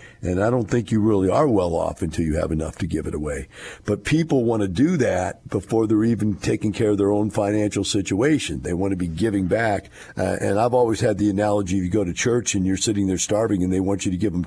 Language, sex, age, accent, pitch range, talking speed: English, male, 50-69, American, 95-110 Hz, 260 wpm